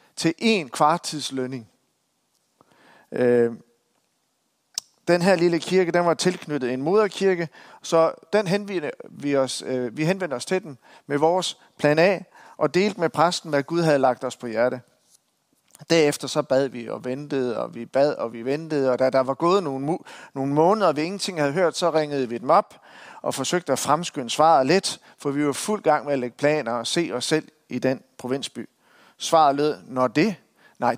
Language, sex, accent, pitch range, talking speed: Danish, male, native, 135-175 Hz, 180 wpm